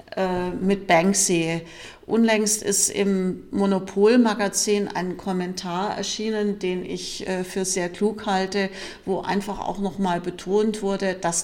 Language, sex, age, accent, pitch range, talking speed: German, female, 50-69, German, 180-210 Hz, 115 wpm